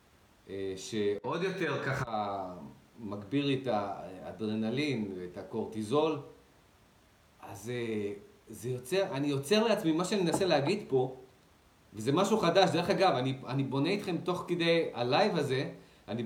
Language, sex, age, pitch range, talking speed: Hebrew, male, 40-59, 125-175 Hz, 120 wpm